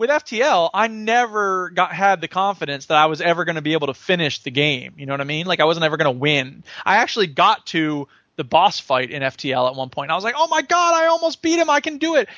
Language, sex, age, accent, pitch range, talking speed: English, male, 20-39, American, 155-230 Hz, 280 wpm